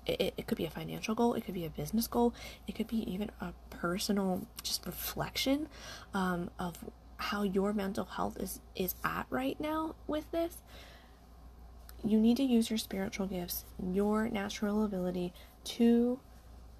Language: English